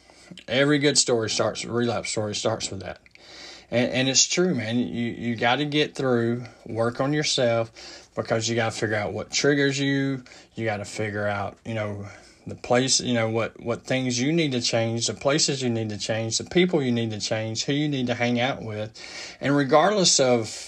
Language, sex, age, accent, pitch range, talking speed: English, male, 20-39, American, 110-140 Hz, 210 wpm